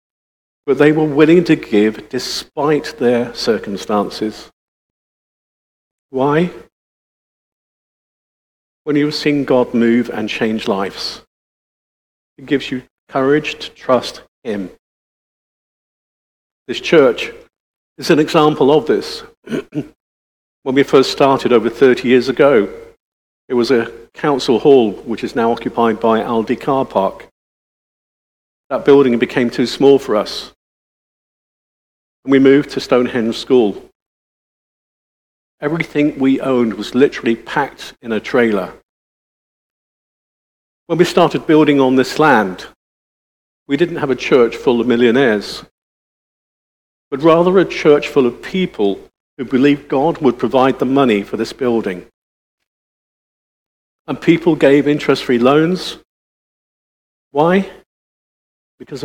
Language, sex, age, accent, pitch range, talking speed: English, male, 50-69, British, 115-150 Hz, 115 wpm